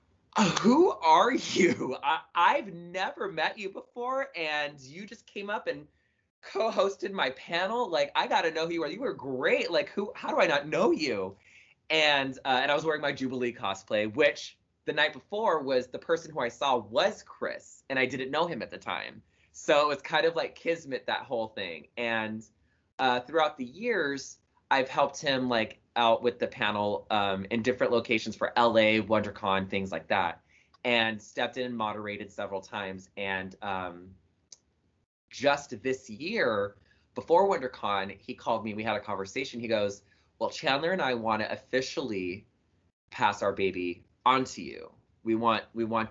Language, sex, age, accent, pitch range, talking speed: English, male, 20-39, American, 100-145 Hz, 180 wpm